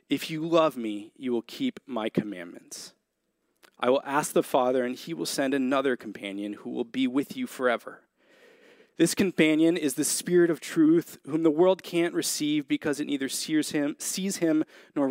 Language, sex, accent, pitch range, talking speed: English, male, American, 110-165 Hz, 175 wpm